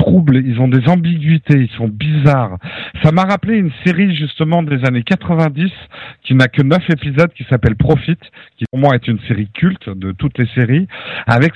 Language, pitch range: French, 125-170 Hz